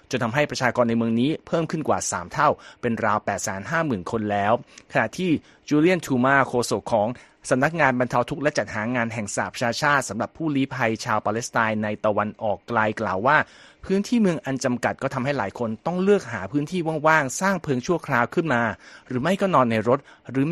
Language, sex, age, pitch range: Thai, male, 30-49, 115-140 Hz